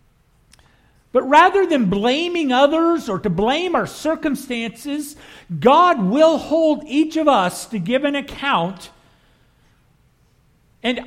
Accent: American